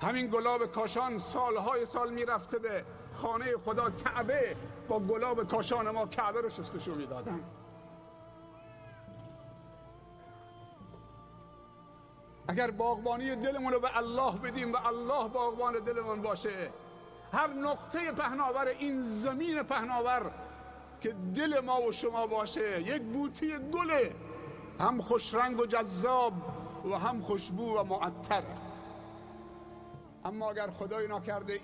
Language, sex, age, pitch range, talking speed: English, male, 50-69, 175-255 Hz, 110 wpm